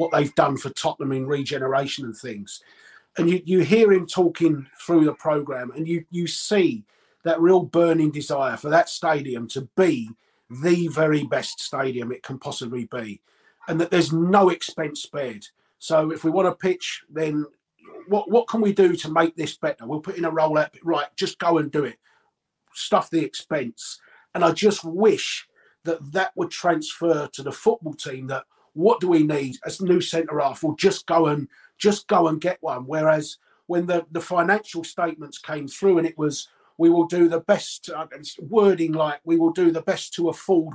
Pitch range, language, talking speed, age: 150-180 Hz, English, 190 wpm, 40-59